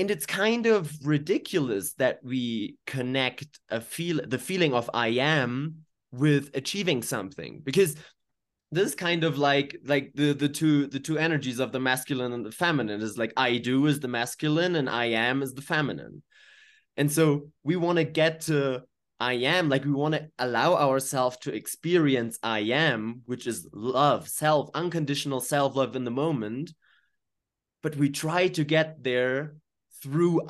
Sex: male